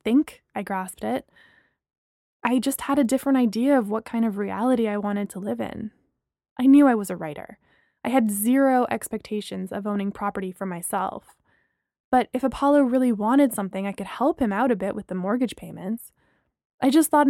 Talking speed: 195 wpm